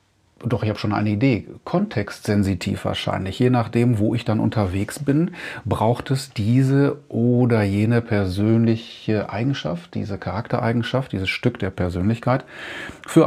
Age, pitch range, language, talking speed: 40-59, 100-125 Hz, German, 130 wpm